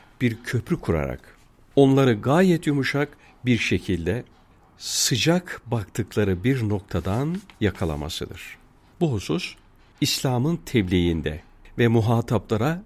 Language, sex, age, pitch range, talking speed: Turkish, male, 50-69, 95-135 Hz, 90 wpm